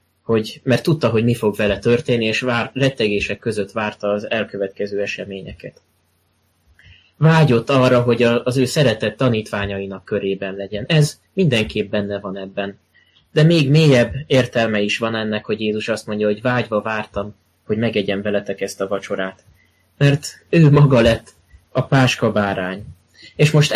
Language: Hungarian